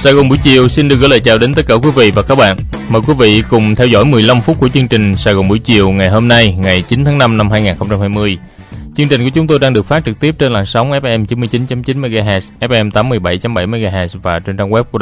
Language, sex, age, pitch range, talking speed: Vietnamese, male, 20-39, 95-125 Hz, 260 wpm